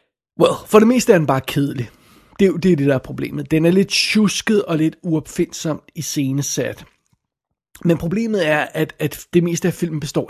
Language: Danish